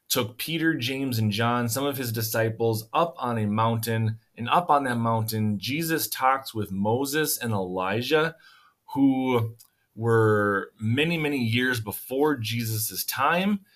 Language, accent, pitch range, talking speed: English, American, 100-130 Hz, 140 wpm